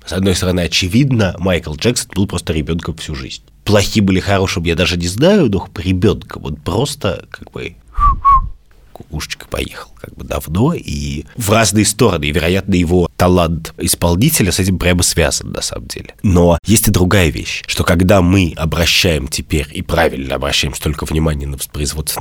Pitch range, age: 80-105 Hz, 30-49